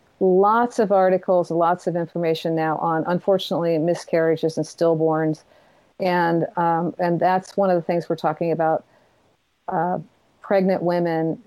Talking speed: 135 wpm